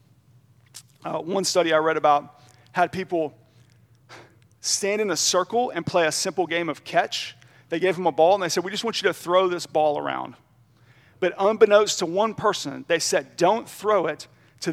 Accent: American